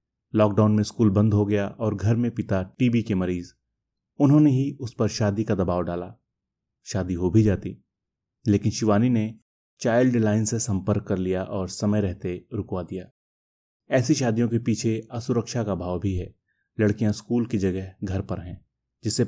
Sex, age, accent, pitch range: male, 30-49, native, 95-110 Hz